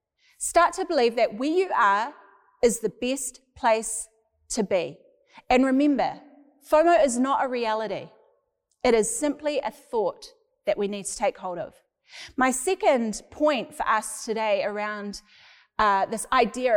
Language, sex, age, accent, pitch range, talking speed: English, female, 30-49, Australian, 230-325 Hz, 150 wpm